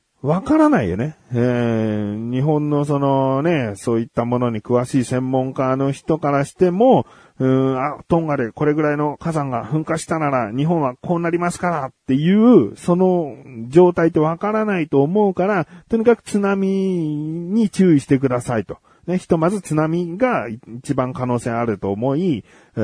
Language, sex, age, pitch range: Japanese, male, 40-59, 115-170 Hz